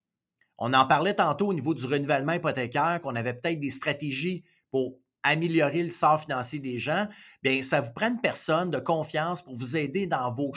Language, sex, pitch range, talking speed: French, male, 135-175 Hz, 200 wpm